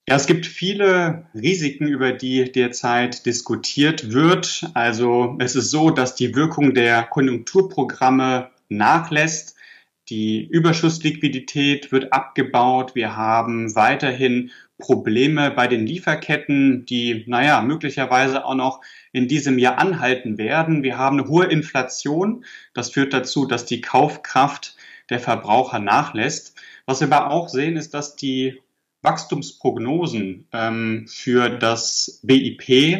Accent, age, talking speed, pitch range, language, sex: German, 30-49, 120 wpm, 125-155 Hz, German, male